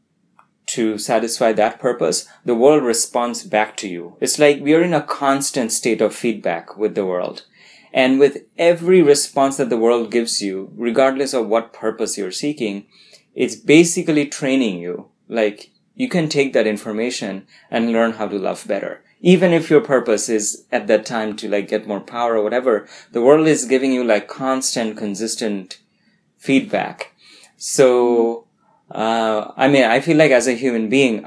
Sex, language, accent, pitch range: male, English, Indian, 105-145 Hz